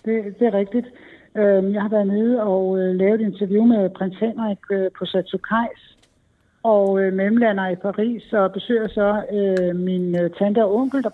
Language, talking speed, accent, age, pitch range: Danish, 185 wpm, native, 60-79, 180-205 Hz